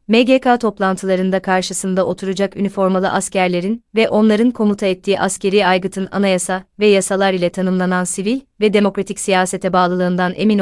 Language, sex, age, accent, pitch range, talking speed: Turkish, female, 30-49, native, 185-210 Hz, 130 wpm